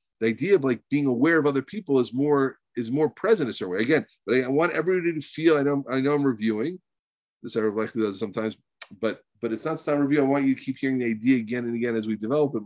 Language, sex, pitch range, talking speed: English, male, 115-150 Hz, 275 wpm